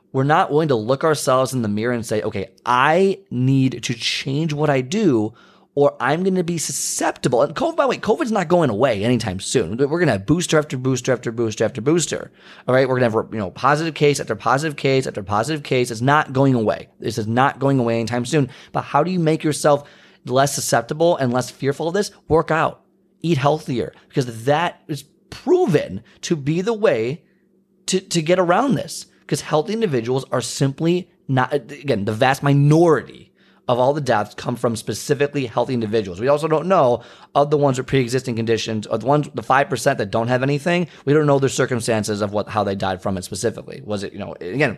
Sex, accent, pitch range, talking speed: male, American, 120-155 Hz, 215 wpm